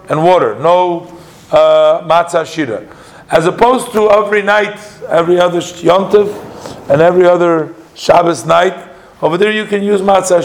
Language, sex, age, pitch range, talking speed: English, male, 50-69, 170-210 Hz, 145 wpm